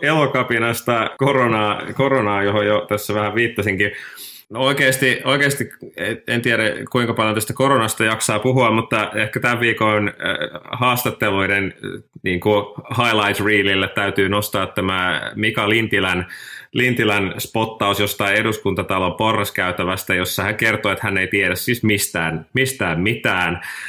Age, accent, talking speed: 20-39, native, 125 wpm